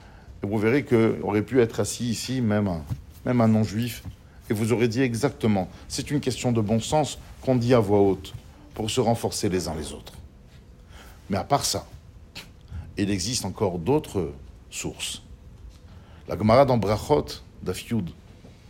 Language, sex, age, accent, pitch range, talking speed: French, male, 50-69, French, 90-130 Hz, 155 wpm